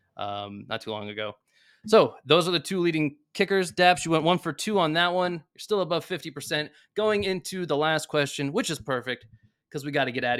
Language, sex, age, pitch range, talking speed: English, male, 20-39, 120-175 Hz, 230 wpm